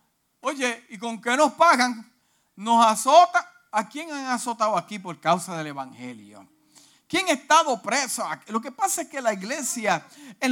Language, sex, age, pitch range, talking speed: Spanish, male, 50-69, 205-295 Hz, 165 wpm